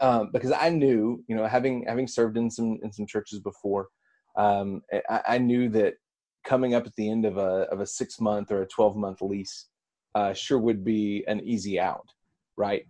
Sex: male